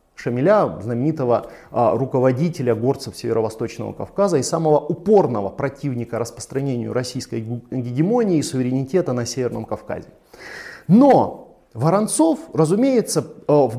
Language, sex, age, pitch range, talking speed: Russian, male, 30-49, 130-195 Hz, 95 wpm